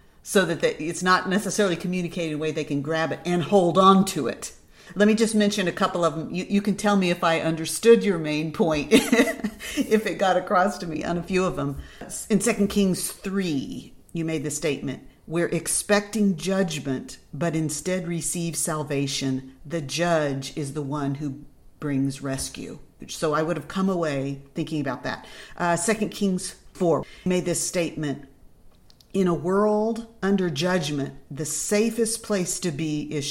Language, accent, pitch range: English, American, 145-185 Hz